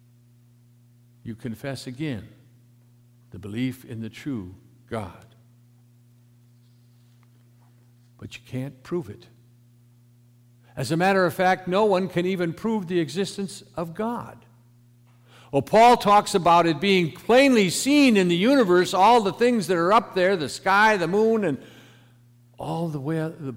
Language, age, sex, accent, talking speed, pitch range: English, 60-79, male, American, 135 wpm, 120-175 Hz